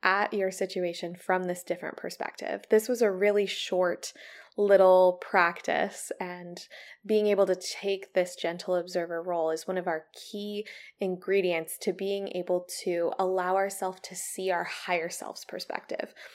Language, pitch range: English, 175-200 Hz